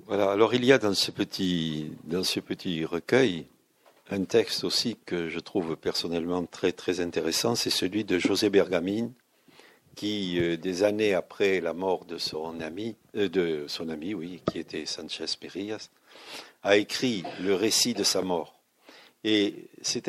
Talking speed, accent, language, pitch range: 165 wpm, French, French, 90-105 Hz